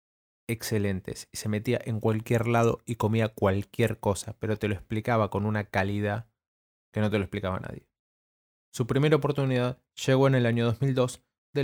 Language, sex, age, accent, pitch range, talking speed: Spanish, male, 20-39, Argentinian, 115-135 Hz, 170 wpm